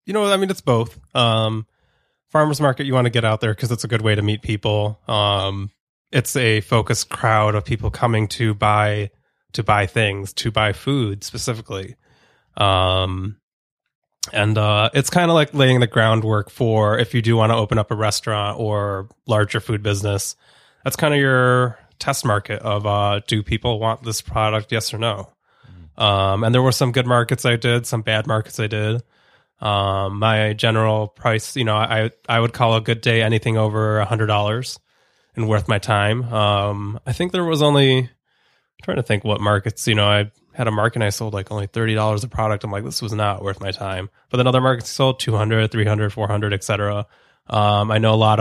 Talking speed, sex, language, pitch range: 205 wpm, male, English, 105-120 Hz